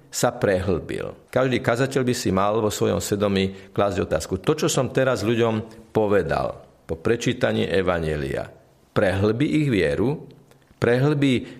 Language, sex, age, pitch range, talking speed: Slovak, male, 50-69, 105-140 Hz, 130 wpm